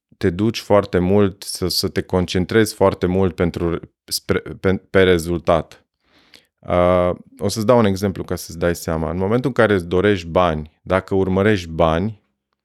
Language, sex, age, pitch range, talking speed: Romanian, male, 30-49, 85-105 Hz, 165 wpm